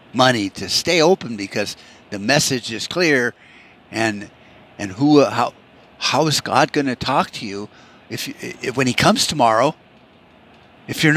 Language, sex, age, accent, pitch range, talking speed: English, male, 50-69, American, 105-140 Hz, 165 wpm